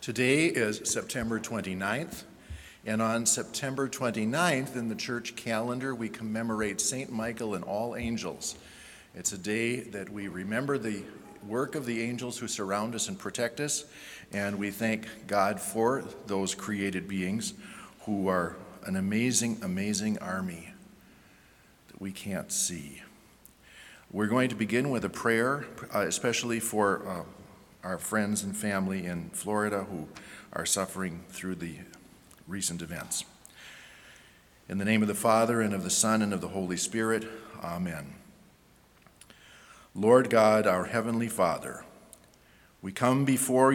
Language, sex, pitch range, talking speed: English, male, 95-120 Hz, 140 wpm